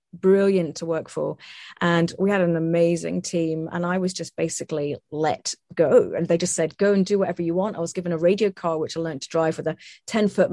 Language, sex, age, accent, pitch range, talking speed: English, female, 30-49, British, 170-205 Hz, 240 wpm